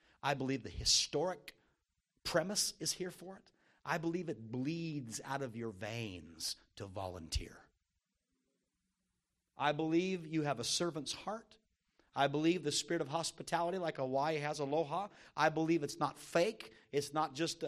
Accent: American